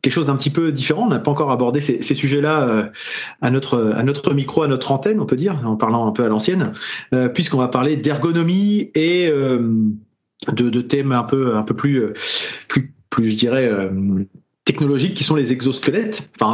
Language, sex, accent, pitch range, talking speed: French, male, French, 125-155 Hz, 200 wpm